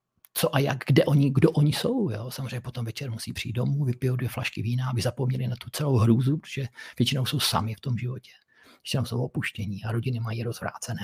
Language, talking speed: Czech, 210 wpm